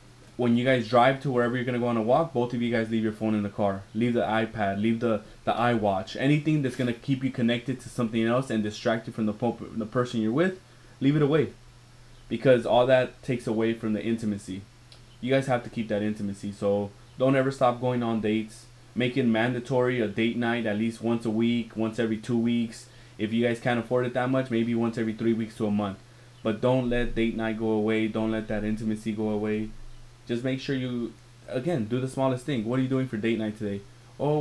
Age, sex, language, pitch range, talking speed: 20-39, male, English, 115-135 Hz, 230 wpm